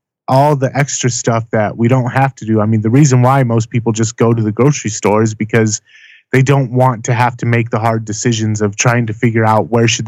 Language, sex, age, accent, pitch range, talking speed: English, male, 20-39, American, 110-130 Hz, 250 wpm